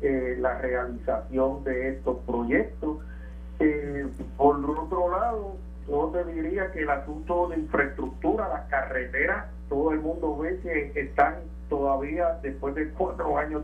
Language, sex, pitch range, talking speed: Spanish, male, 120-150 Hz, 135 wpm